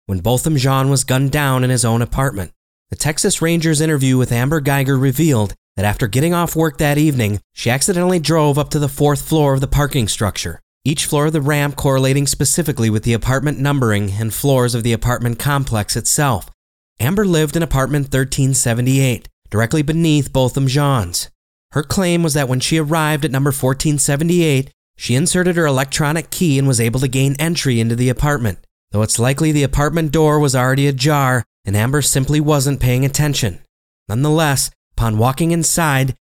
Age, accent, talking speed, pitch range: 30-49, American, 175 wpm, 120-150 Hz